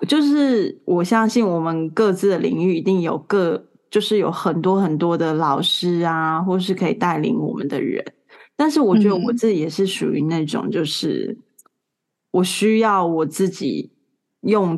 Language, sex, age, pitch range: Chinese, female, 20-39, 170-215 Hz